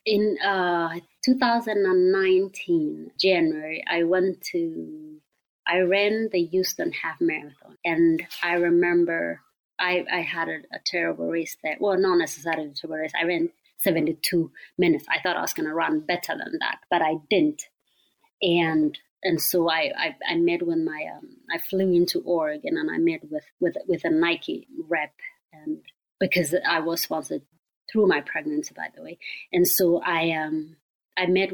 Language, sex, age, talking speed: English, female, 30-49, 165 wpm